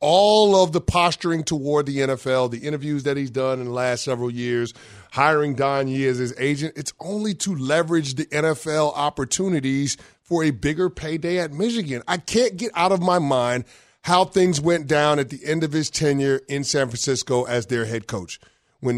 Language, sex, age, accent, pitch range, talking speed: English, male, 30-49, American, 135-190 Hz, 195 wpm